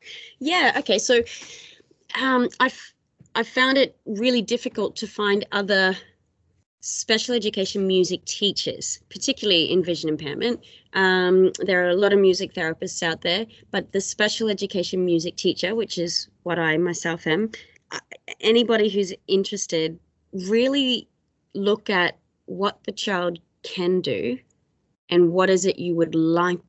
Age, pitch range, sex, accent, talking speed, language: 30-49, 170-205 Hz, female, Australian, 135 wpm, English